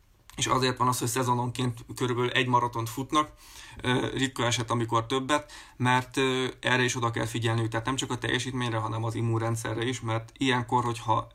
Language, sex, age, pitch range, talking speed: Hungarian, male, 20-39, 115-125 Hz, 170 wpm